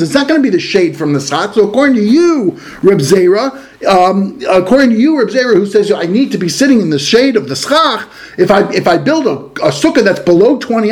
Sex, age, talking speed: male, 50-69, 255 wpm